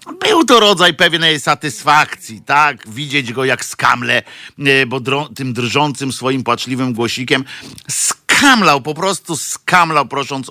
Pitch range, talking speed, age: 120-145 Hz, 120 wpm, 50-69